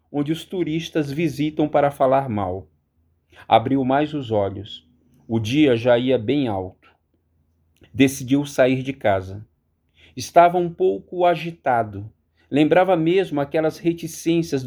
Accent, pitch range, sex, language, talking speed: Brazilian, 105-160 Hz, male, Portuguese, 120 wpm